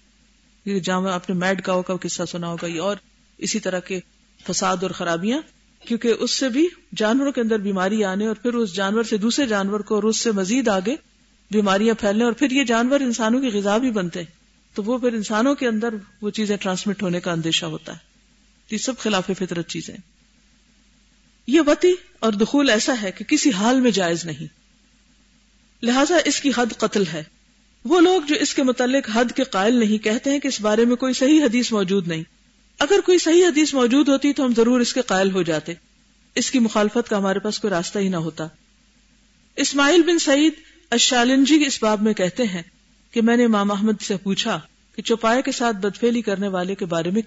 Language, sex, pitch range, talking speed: Urdu, female, 195-245 Hz, 200 wpm